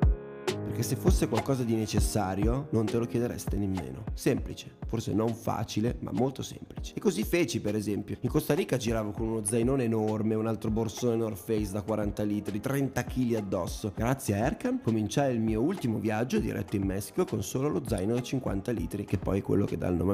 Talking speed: 205 wpm